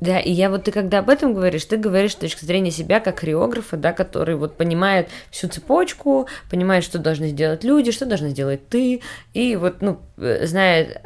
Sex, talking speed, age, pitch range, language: female, 195 wpm, 20-39, 150-190 Hz, Russian